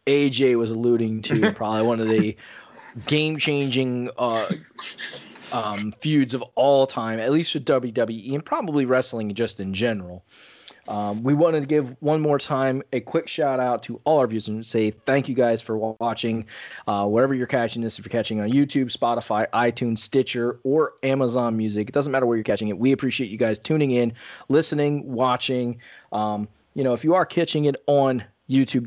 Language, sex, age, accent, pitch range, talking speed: English, male, 30-49, American, 115-140 Hz, 185 wpm